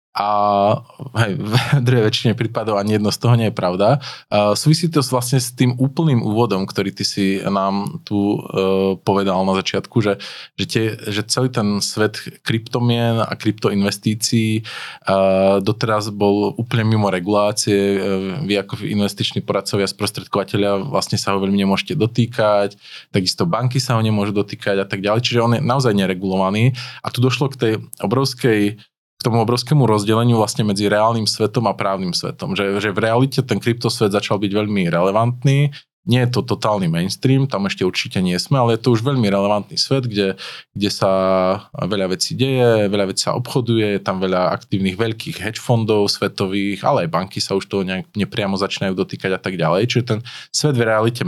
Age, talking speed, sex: 20-39, 170 wpm, male